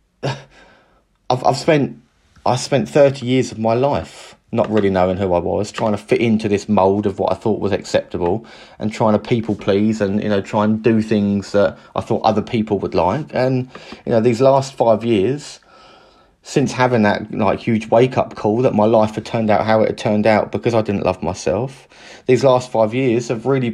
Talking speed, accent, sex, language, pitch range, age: 210 wpm, British, male, English, 105-125 Hz, 30-49